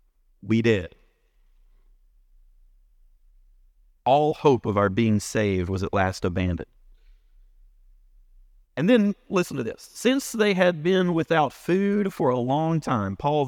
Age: 40-59